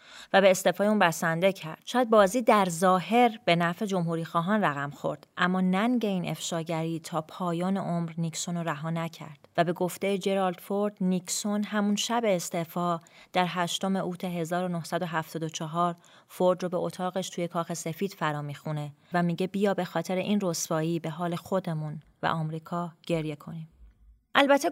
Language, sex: Persian, female